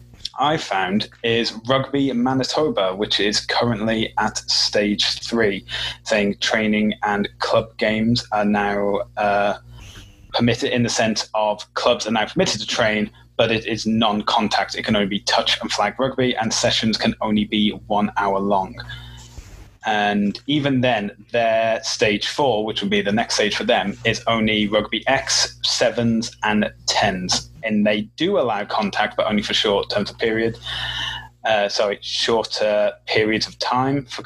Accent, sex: British, male